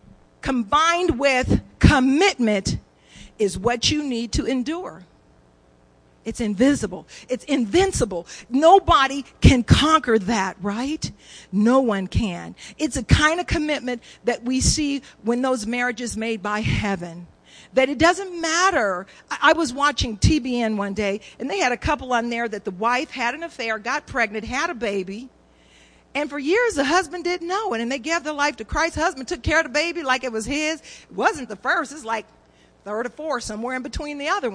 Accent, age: American, 50-69